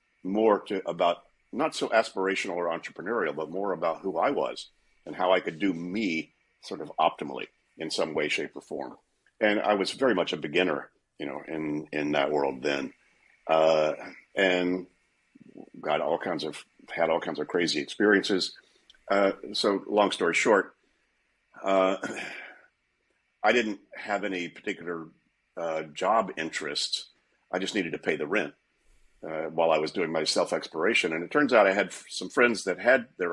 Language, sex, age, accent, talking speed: English, male, 50-69, American, 170 wpm